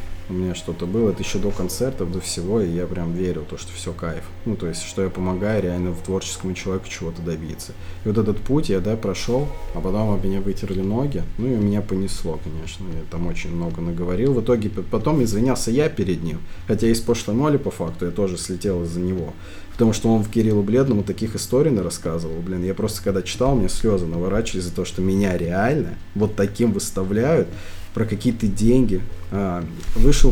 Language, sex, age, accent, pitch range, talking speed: Russian, male, 20-39, native, 90-110 Hz, 200 wpm